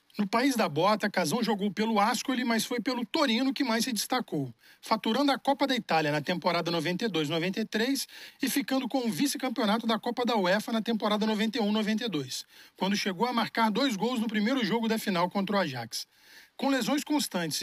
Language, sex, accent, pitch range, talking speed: Portuguese, male, Brazilian, 205-250 Hz, 180 wpm